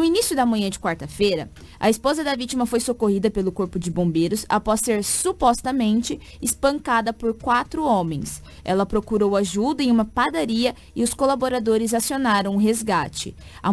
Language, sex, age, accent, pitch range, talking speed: Portuguese, female, 20-39, Brazilian, 200-250 Hz, 155 wpm